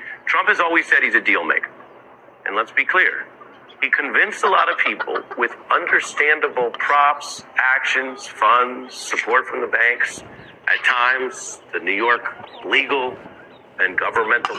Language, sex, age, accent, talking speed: English, male, 40-59, American, 145 wpm